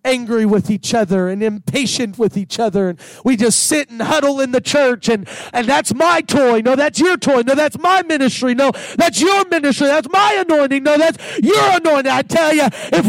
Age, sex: 40-59, male